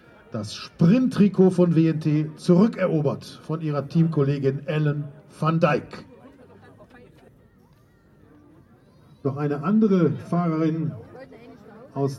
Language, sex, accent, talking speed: German, male, German, 80 wpm